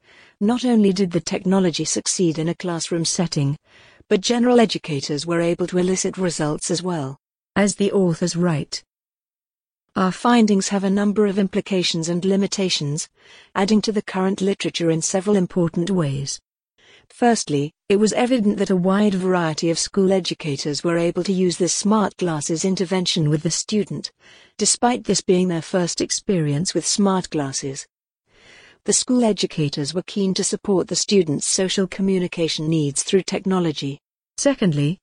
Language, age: English, 50-69